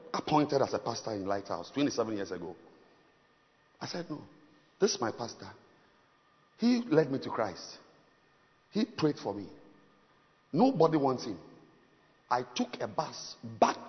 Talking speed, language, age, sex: 145 wpm, English, 50-69, male